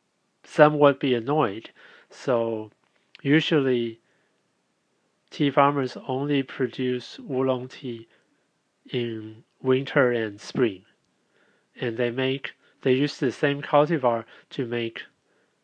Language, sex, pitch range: Chinese, male, 120-140 Hz